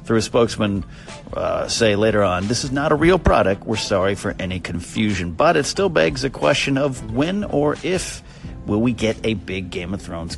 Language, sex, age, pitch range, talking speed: English, male, 40-59, 95-130 Hz, 210 wpm